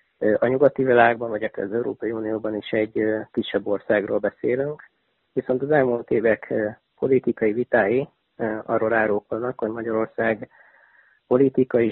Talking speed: 115 wpm